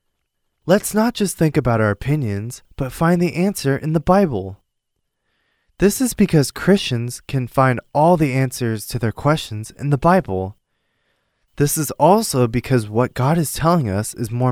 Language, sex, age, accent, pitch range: Korean, male, 20-39, American, 115-160 Hz